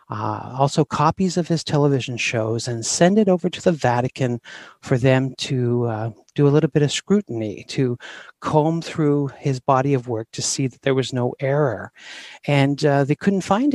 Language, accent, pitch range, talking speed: English, American, 120-155 Hz, 185 wpm